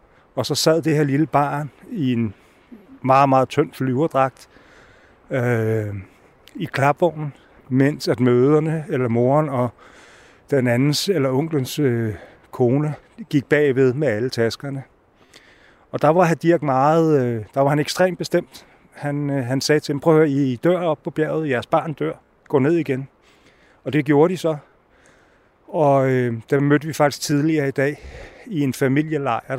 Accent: native